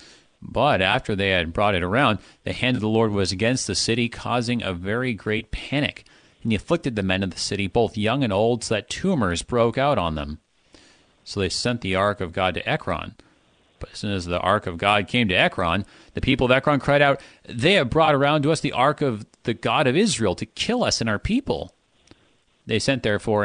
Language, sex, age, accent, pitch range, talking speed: English, male, 40-59, American, 95-125 Hz, 225 wpm